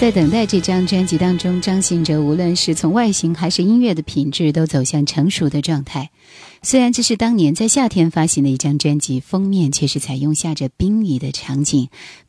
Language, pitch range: Chinese, 140-185 Hz